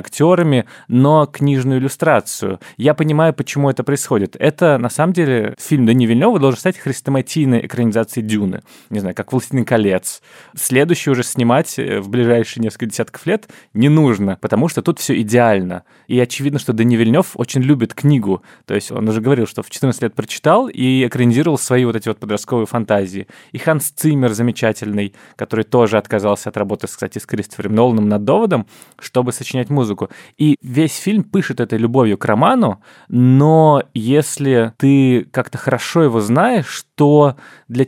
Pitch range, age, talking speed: 115-145 Hz, 20-39, 160 wpm